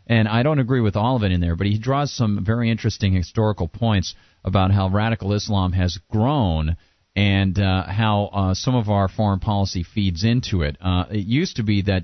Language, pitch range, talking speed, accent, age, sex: English, 95-110 Hz, 210 wpm, American, 40-59, male